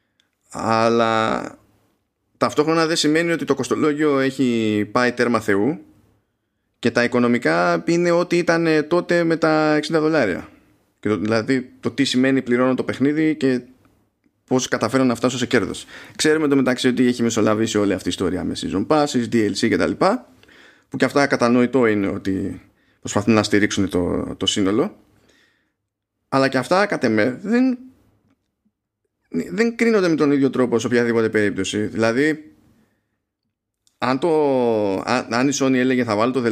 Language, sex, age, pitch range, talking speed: Greek, male, 20-39, 110-145 Hz, 150 wpm